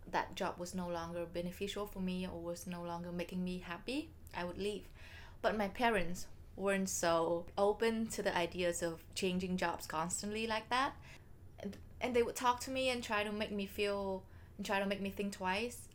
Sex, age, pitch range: female, 20-39, 180-215 Hz